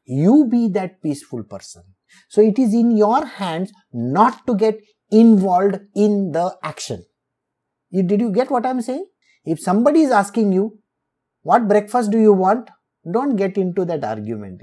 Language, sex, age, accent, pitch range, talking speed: English, male, 50-69, Indian, 165-220 Hz, 170 wpm